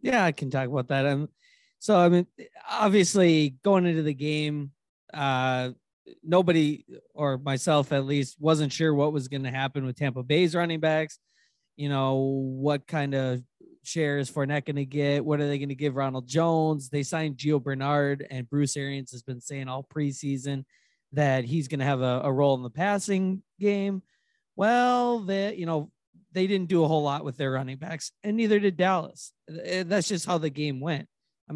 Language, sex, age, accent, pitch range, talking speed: English, male, 20-39, American, 140-170 Hz, 190 wpm